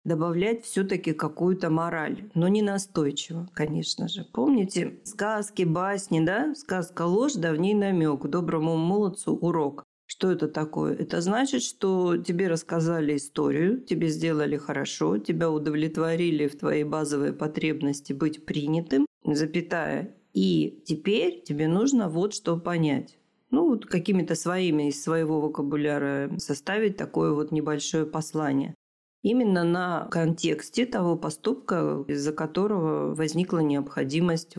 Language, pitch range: Russian, 150-185 Hz